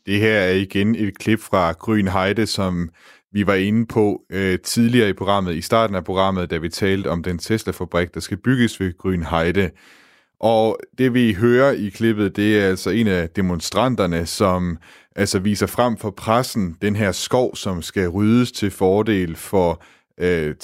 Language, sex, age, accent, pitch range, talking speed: Danish, male, 30-49, native, 90-110 Hz, 175 wpm